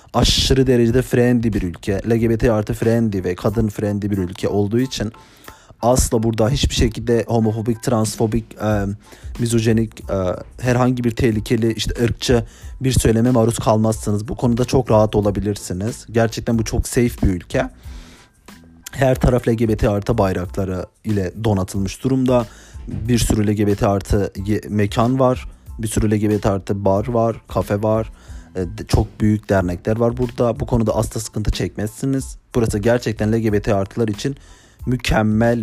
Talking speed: 135 wpm